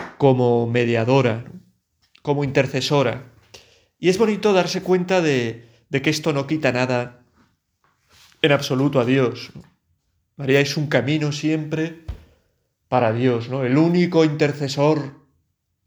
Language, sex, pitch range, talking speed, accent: Spanish, male, 120-155 Hz, 125 wpm, Spanish